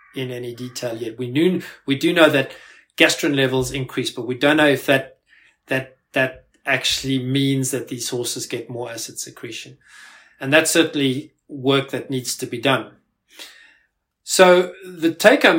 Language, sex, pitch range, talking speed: Danish, male, 130-165 Hz, 160 wpm